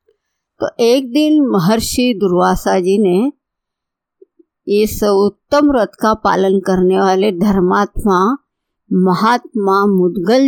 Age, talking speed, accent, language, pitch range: 50-69, 70 wpm, native, Hindi, 190-240 Hz